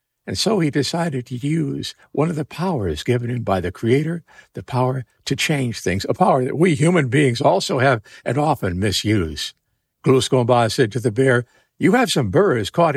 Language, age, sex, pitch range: English, 60-79, male, 130-175 Hz